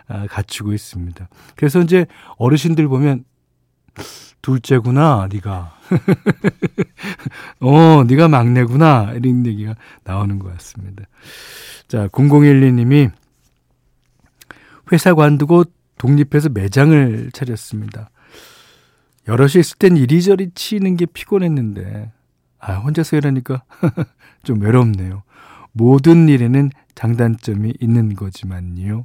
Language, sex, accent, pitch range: Korean, male, native, 105-160 Hz